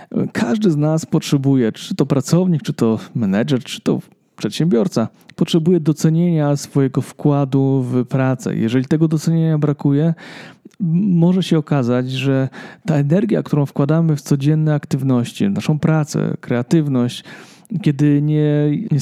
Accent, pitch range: native, 130-165 Hz